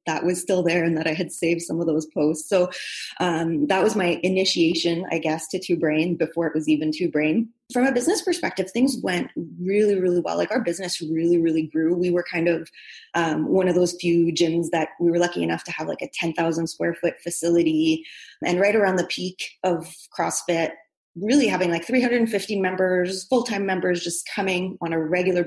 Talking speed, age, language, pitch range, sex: 205 wpm, 20-39, English, 165-185 Hz, female